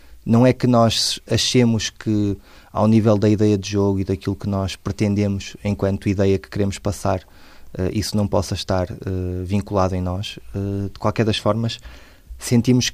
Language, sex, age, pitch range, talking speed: Portuguese, male, 20-39, 100-115 Hz, 160 wpm